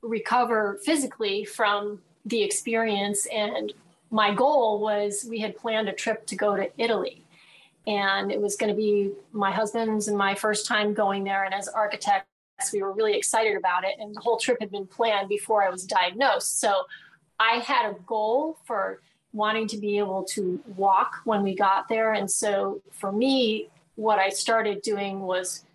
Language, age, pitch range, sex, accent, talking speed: English, 30-49, 195-225 Hz, female, American, 180 wpm